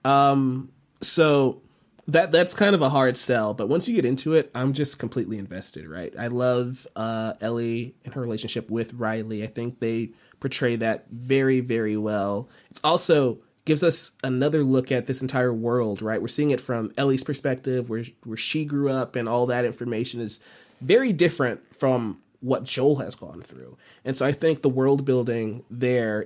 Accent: American